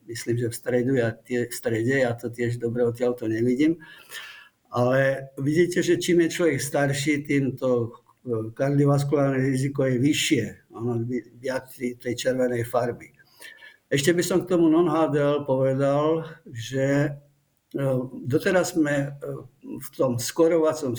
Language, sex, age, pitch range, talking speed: Slovak, male, 60-79, 125-150 Hz, 135 wpm